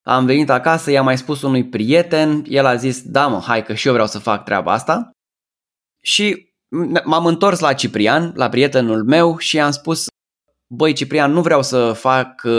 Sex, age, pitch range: male, 20-39, 130-165 Hz